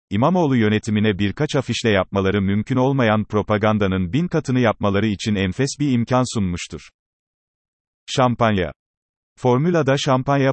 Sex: male